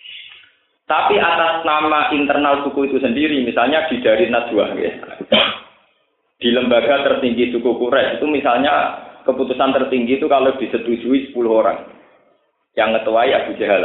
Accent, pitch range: native, 115-150 Hz